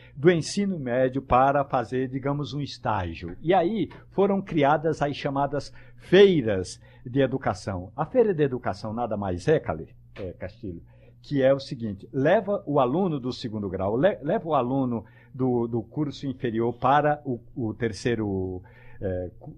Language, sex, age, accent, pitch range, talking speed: Portuguese, male, 60-79, Brazilian, 115-155 Hz, 145 wpm